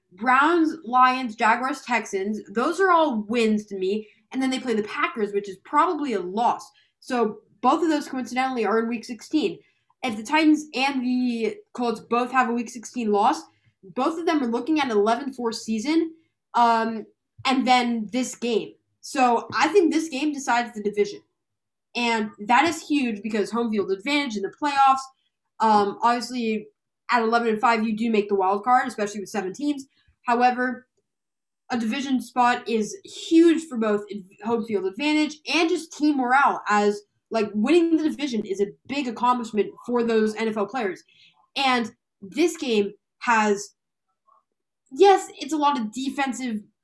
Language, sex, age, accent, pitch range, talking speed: English, female, 10-29, American, 215-270 Hz, 160 wpm